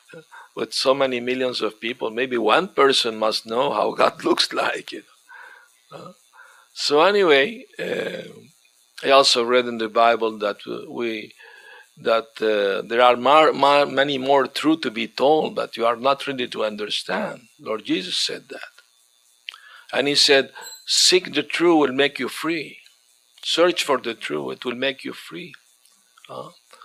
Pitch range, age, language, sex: 115-165 Hz, 50-69, Spanish, male